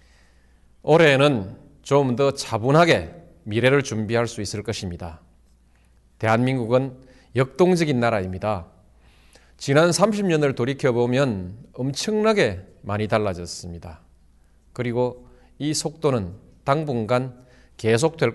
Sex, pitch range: male, 85-135 Hz